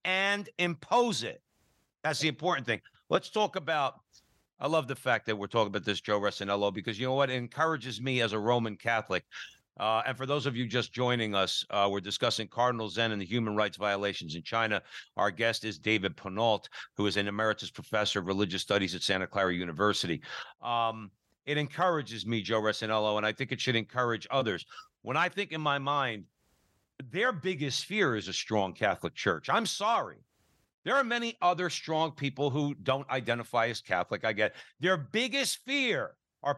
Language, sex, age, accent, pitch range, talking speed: English, male, 60-79, American, 110-150 Hz, 190 wpm